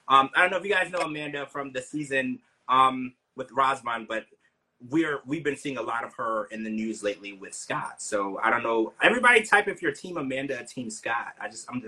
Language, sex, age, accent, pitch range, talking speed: English, male, 30-49, American, 110-150 Hz, 255 wpm